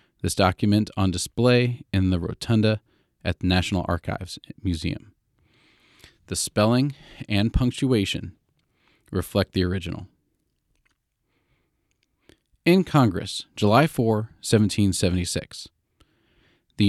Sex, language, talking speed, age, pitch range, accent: male, English, 90 wpm, 40-59, 95-120 Hz, American